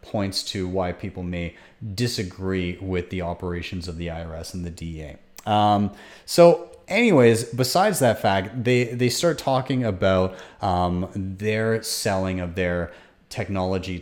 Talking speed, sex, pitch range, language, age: 135 wpm, male, 90-120 Hz, English, 30-49